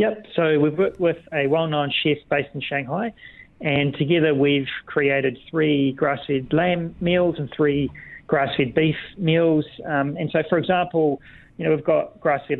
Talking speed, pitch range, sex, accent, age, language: 160 wpm, 140-165 Hz, male, Australian, 40-59, English